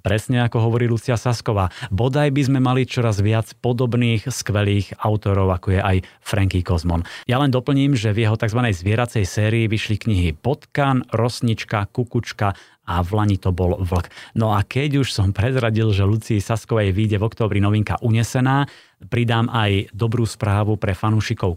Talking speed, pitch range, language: 160 wpm, 100-125 Hz, Slovak